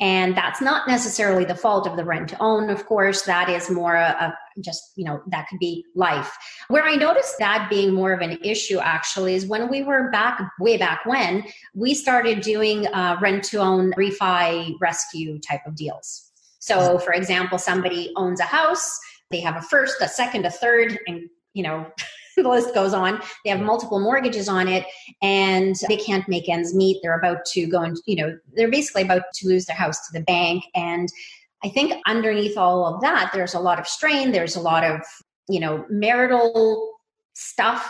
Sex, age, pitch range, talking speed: female, 30-49, 175-225 Hz, 195 wpm